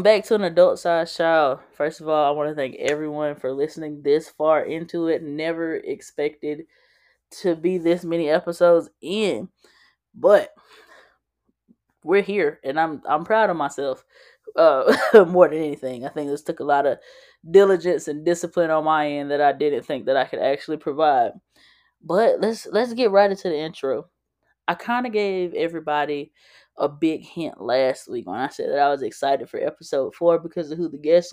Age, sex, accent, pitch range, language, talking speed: 10-29, female, American, 150-190 Hz, English, 180 wpm